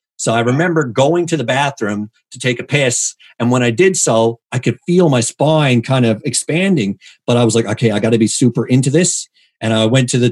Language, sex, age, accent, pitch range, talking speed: English, male, 50-69, American, 120-165 Hz, 240 wpm